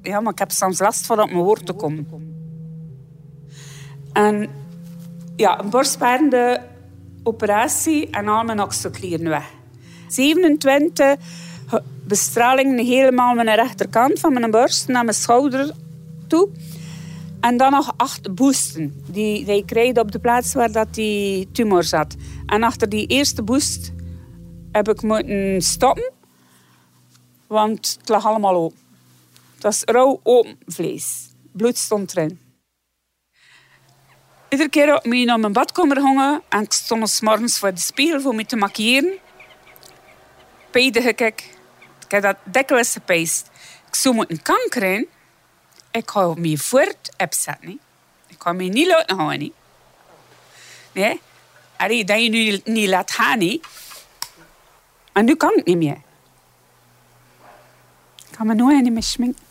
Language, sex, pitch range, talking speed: Dutch, female, 160-245 Hz, 140 wpm